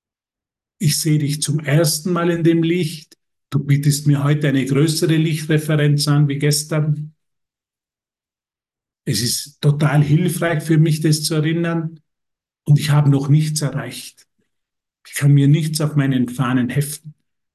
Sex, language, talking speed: male, German, 145 wpm